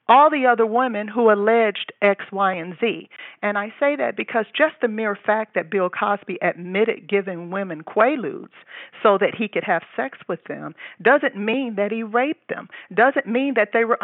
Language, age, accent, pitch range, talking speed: English, 50-69, American, 195-245 Hz, 190 wpm